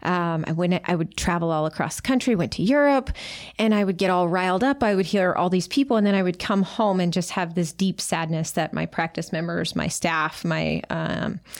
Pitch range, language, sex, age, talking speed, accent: 170-190 Hz, English, female, 30-49, 240 wpm, American